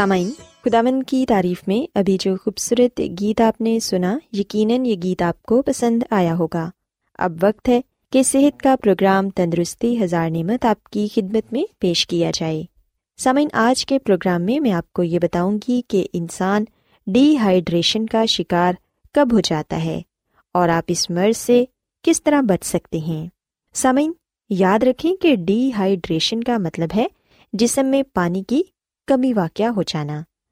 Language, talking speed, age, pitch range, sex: Urdu, 165 wpm, 20-39, 180-245 Hz, female